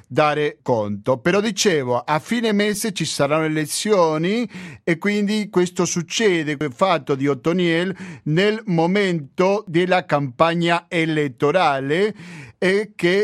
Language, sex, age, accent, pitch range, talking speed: Italian, male, 50-69, native, 145-185 Hz, 115 wpm